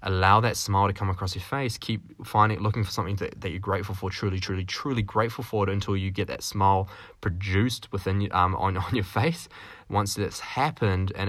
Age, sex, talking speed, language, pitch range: 10-29, male, 215 wpm, English, 90-105 Hz